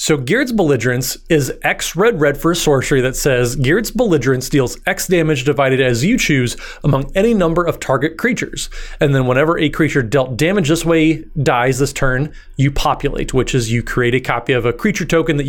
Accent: American